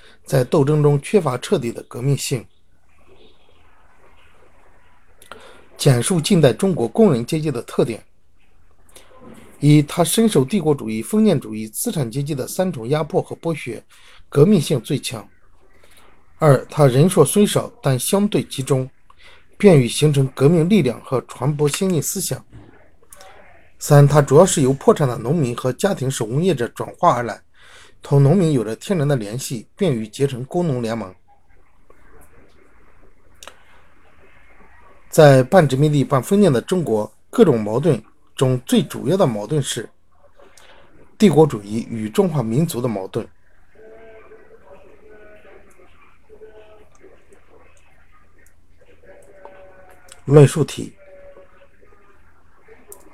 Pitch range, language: 115-170 Hz, Chinese